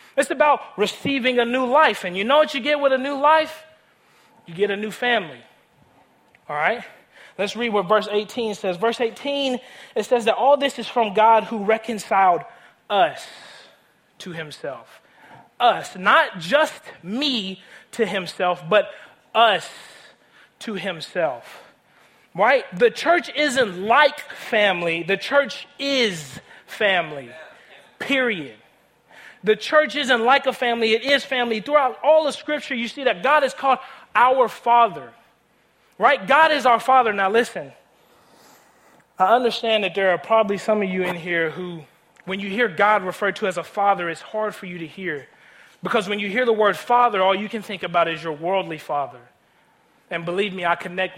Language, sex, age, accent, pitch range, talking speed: English, male, 30-49, American, 190-265 Hz, 165 wpm